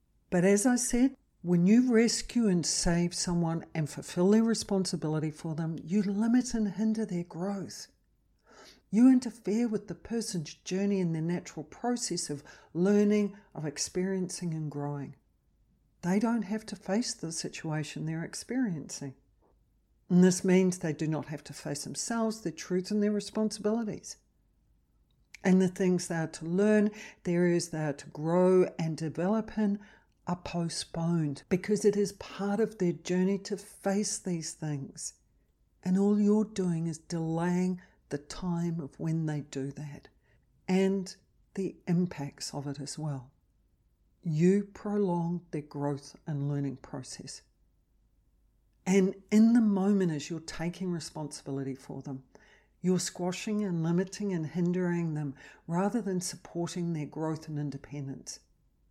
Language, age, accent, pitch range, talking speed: English, 60-79, Australian, 155-200 Hz, 145 wpm